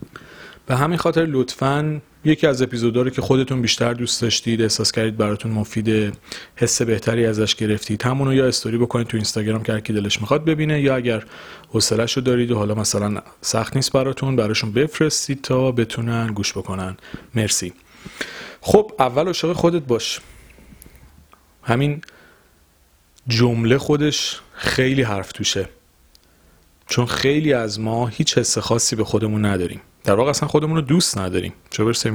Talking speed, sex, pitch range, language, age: 145 wpm, male, 110-130 Hz, Persian, 30-49